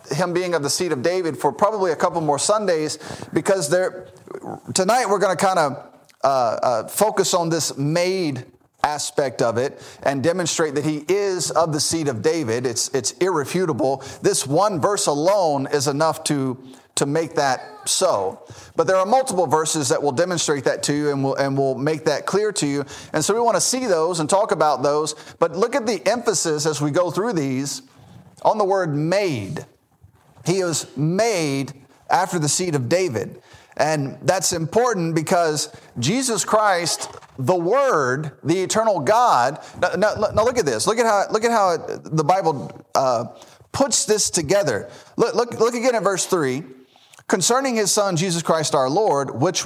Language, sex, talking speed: English, male, 180 wpm